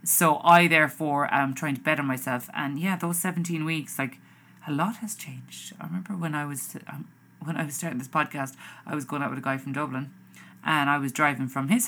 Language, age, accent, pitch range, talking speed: English, 30-49, Irish, 145-195 Hz, 225 wpm